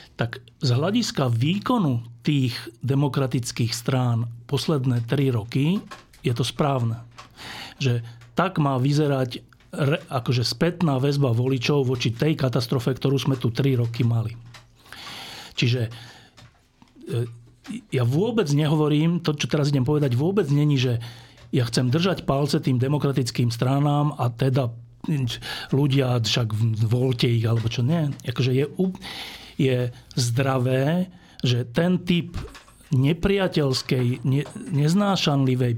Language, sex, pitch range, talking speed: English, male, 125-155 Hz, 115 wpm